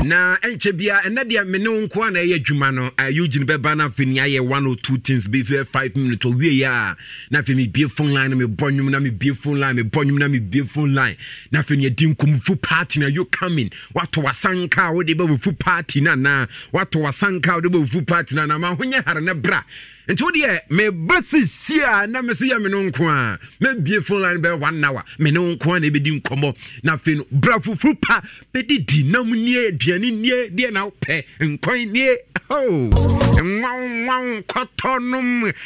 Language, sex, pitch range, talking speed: English, male, 135-195 Hz, 155 wpm